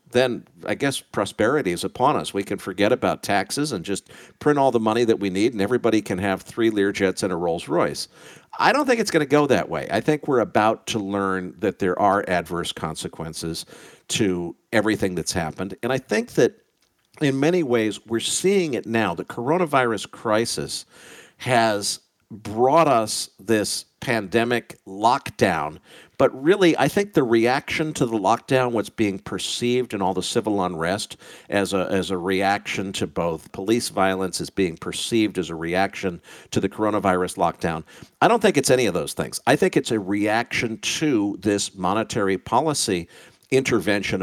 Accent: American